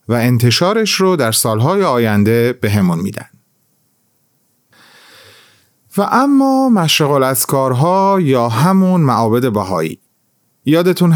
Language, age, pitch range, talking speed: Persian, 30-49, 110-150 Hz, 100 wpm